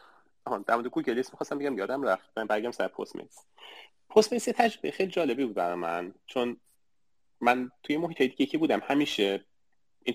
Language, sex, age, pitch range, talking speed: Persian, male, 30-49, 105-140 Hz, 175 wpm